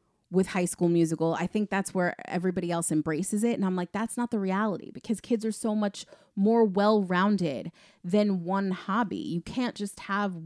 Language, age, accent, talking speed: English, 30-49, American, 190 wpm